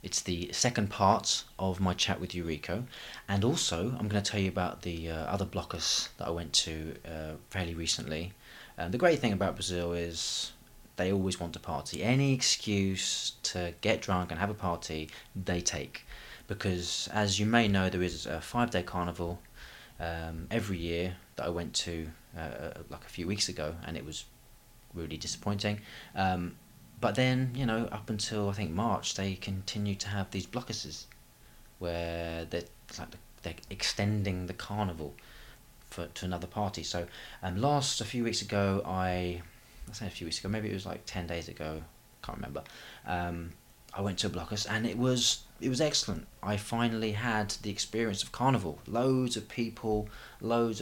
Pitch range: 85-110 Hz